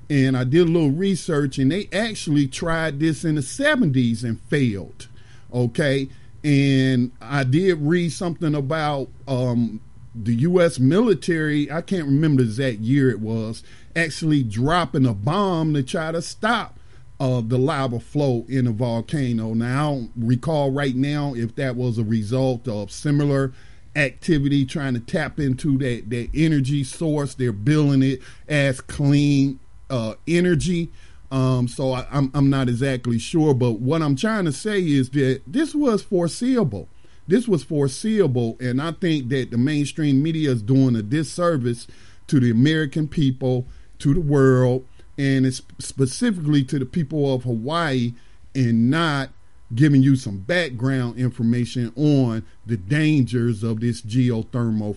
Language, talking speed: English, 155 wpm